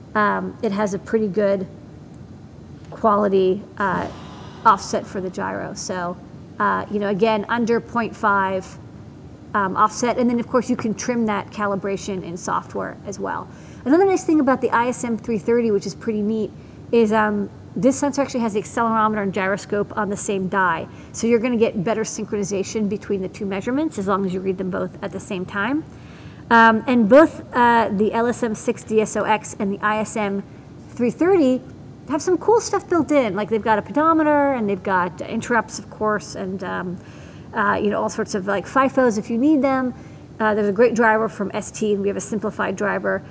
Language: English